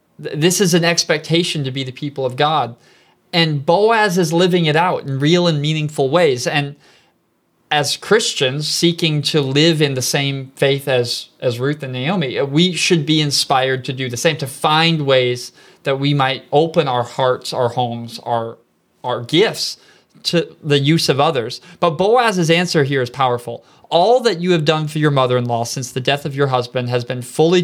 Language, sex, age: English, male, 20-39